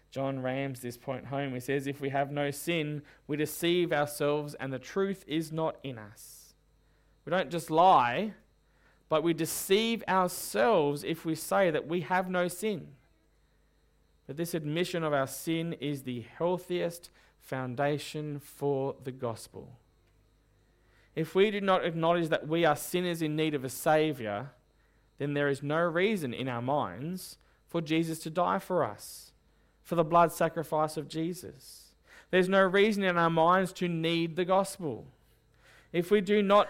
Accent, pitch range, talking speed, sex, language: Australian, 140-180 Hz, 160 wpm, male, English